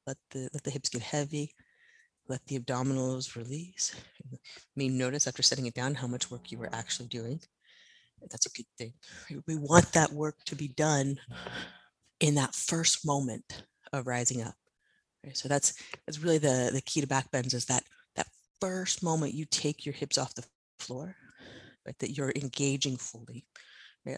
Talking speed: 180 wpm